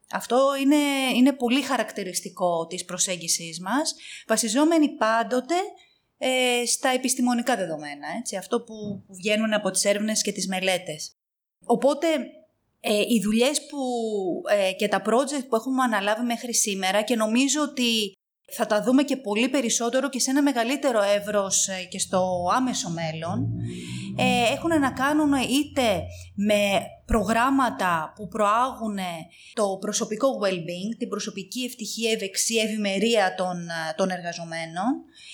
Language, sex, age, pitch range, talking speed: Greek, female, 30-49, 195-265 Hz, 130 wpm